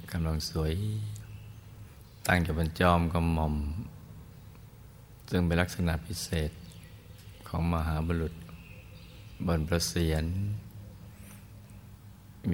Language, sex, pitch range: Thai, male, 80-105 Hz